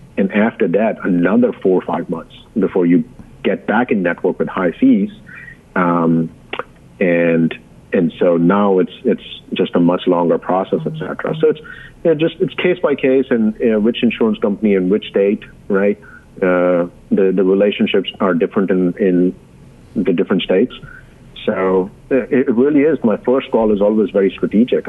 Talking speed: 175 wpm